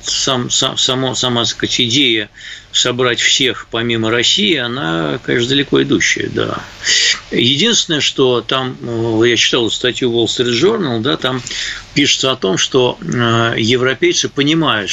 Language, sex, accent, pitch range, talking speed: Russian, male, native, 105-130 Hz, 125 wpm